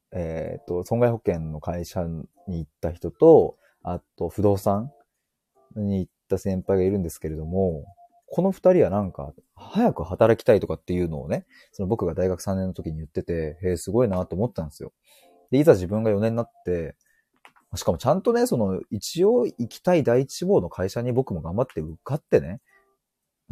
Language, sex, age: Japanese, male, 30-49